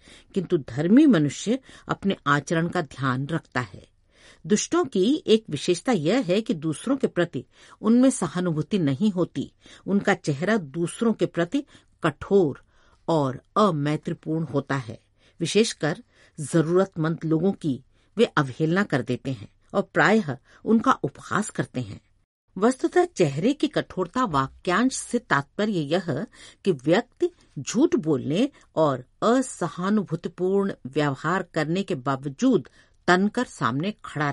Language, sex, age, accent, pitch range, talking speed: Hindi, female, 50-69, native, 140-210 Hz, 120 wpm